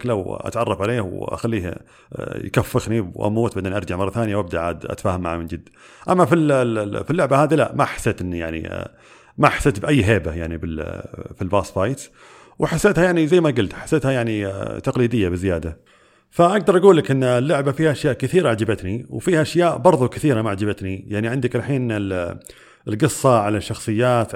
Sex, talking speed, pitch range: male, 155 wpm, 95-125 Hz